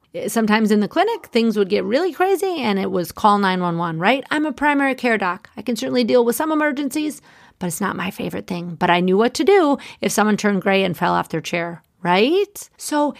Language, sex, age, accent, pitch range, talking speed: English, female, 40-59, American, 185-265 Hz, 225 wpm